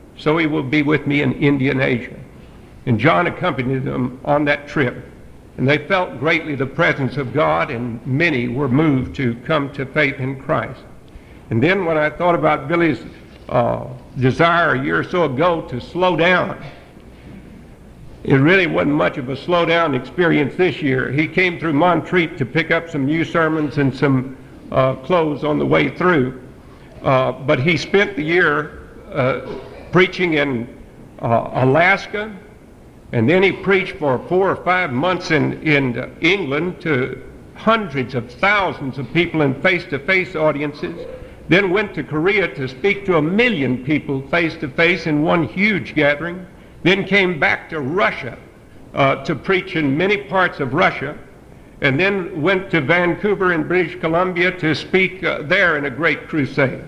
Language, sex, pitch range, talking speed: English, male, 135-180 Hz, 165 wpm